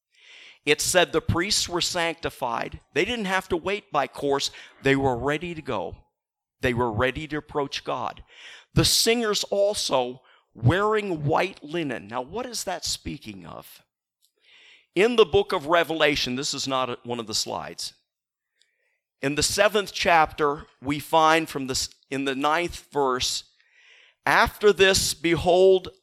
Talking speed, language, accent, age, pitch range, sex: 150 wpm, English, American, 50-69, 145-190 Hz, male